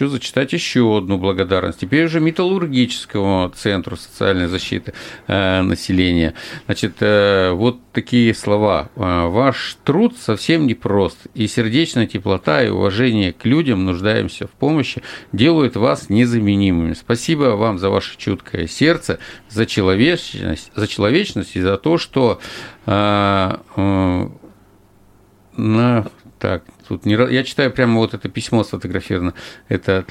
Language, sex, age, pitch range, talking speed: Russian, male, 50-69, 95-125 Hz, 120 wpm